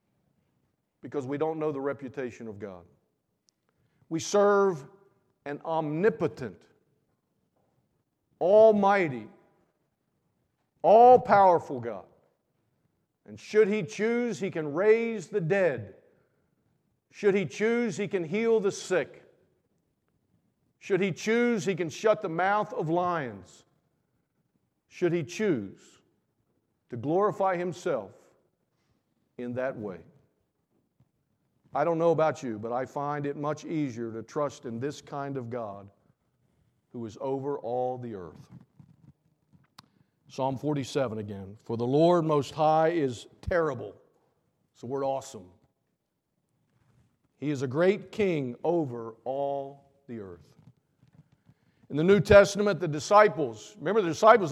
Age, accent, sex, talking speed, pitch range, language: 50-69, American, male, 120 wpm, 135-200 Hz, English